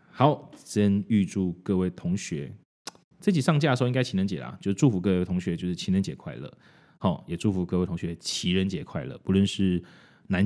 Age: 20-39